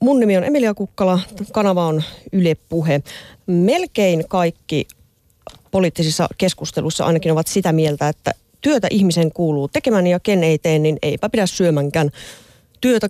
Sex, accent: female, native